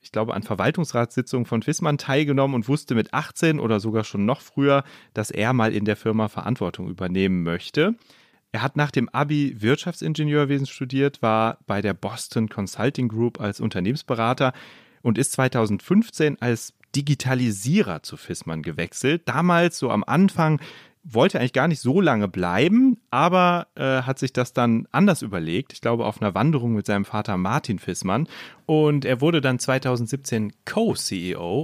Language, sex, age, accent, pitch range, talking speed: German, male, 30-49, German, 110-145 Hz, 155 wpm